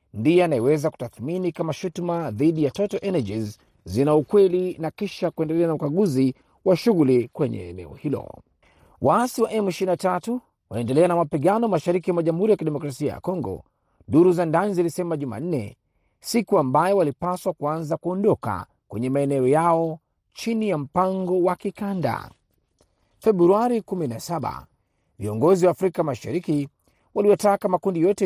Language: Swahili